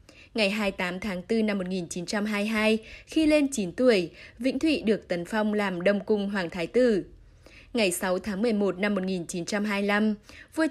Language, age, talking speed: Vietnamese, 10-29, 155 wpm